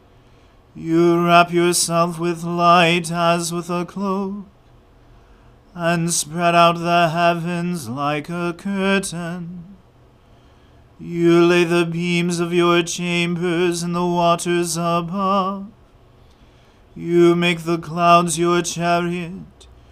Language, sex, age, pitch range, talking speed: English, male, 30-49, 170-175 Hz, 100 wpm